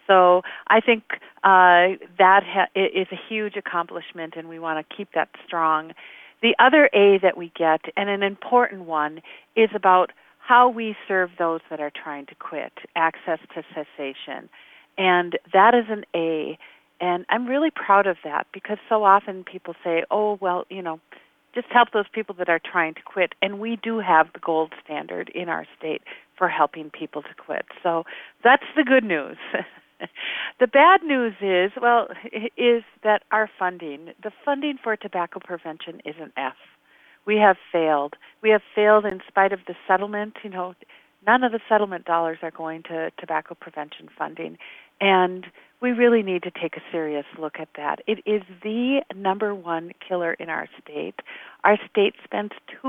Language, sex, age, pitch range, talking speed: English, female, 50-69, 165-215 Hz, 175 wpm